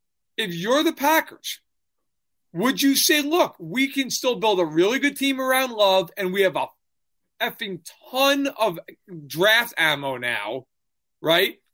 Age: 40-59